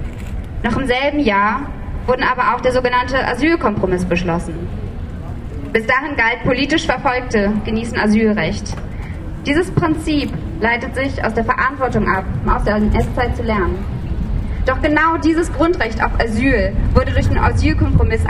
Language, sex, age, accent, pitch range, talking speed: German, female, 20-39, German, 205-275 Hz, 140 wpm